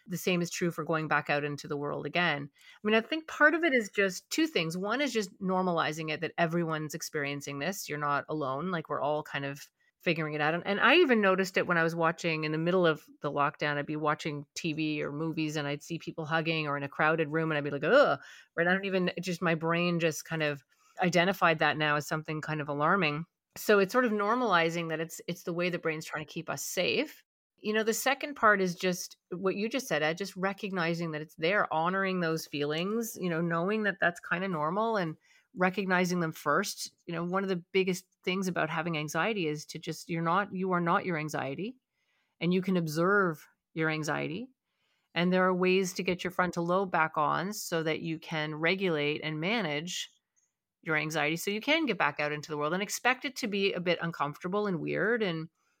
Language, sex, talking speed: English, female, 230 wpm